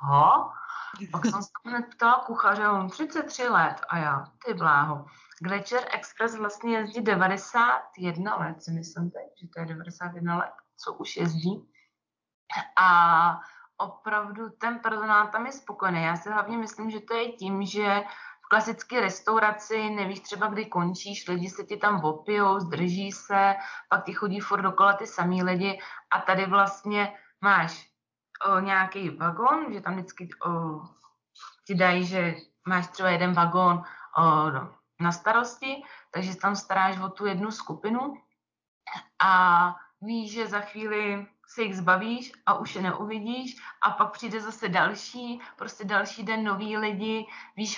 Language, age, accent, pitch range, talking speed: Czech, 30-49, native, 180-220 Hz, 145 wpm